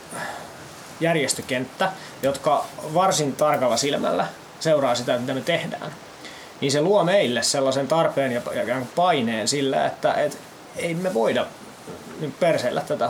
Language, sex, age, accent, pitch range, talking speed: Finnish, male, 20-39, native, 135-165 Hz, 120 wpm